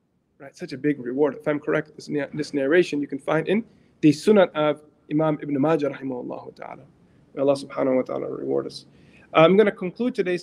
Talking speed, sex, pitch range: 190 wpm, male, 145-180 Hz